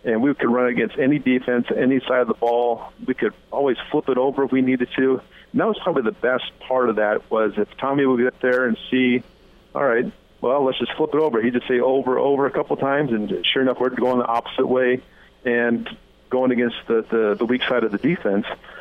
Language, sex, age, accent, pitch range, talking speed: English, male, 50-69, American, 115-130 Hz, 235 wpm